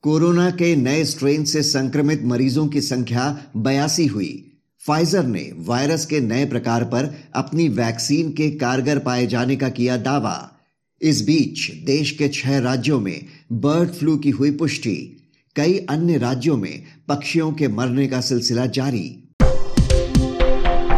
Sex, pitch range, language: male, 130-150 Hz, Hindi